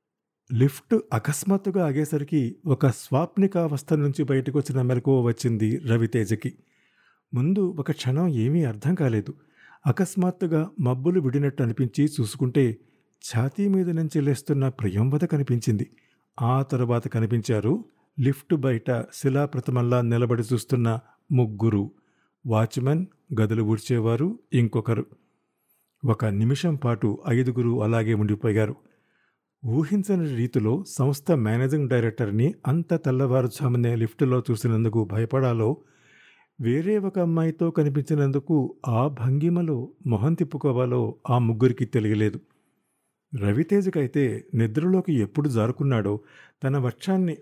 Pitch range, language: 115-150 Hz, Telugu